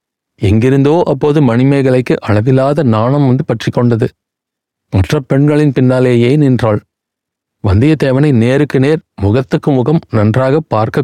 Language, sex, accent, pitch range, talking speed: Tamil, male, native, 115-145 Hz, 105 wpm